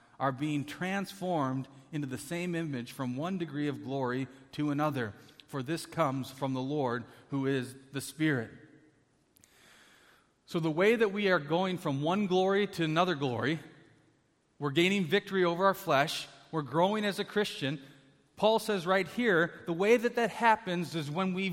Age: 40-59